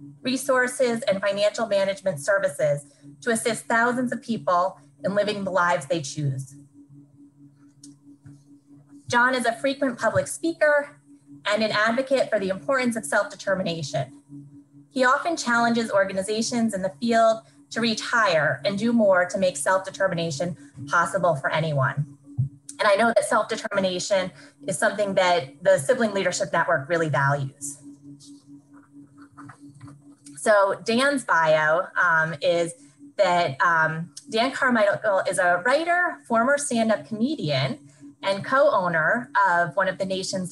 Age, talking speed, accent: 20-39, 125 wpm, American